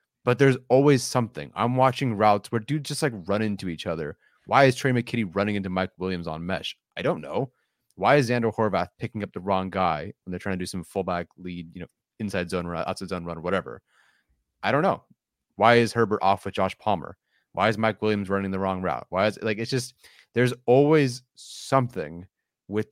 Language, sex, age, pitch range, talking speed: English, male, 30-49, 95-115 Hz, 215 wpm